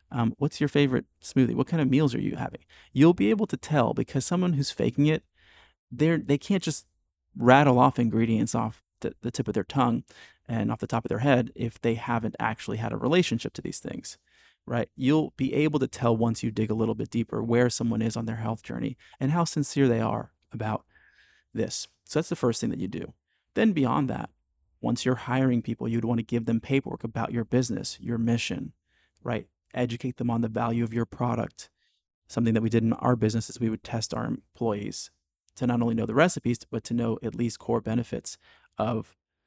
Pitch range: 115-135 Hz